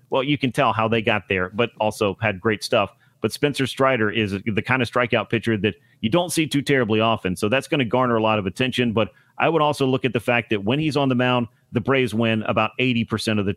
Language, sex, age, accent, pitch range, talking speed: English, male, 40-59, American, 110-130 Hz, 260 wpm